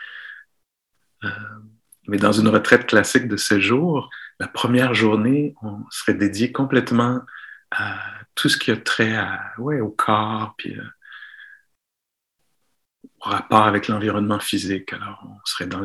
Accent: French